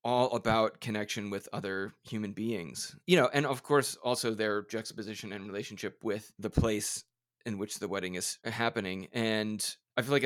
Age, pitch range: 30-49, 110-125 Hz